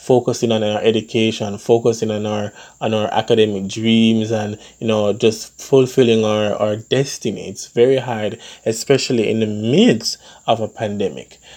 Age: 20-39